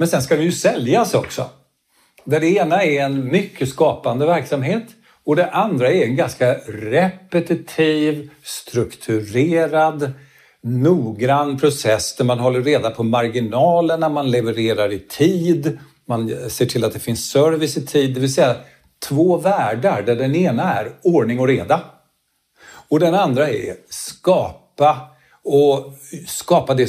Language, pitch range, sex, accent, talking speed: Swedish, 120-155 Hz, male, native, 145 wpm